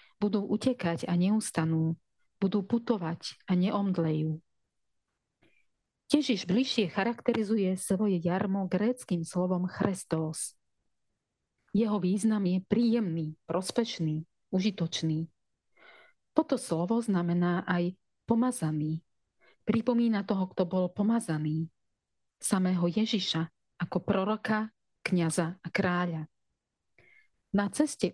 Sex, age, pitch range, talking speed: female, 40-59, 165-210 Hz, 85 wpm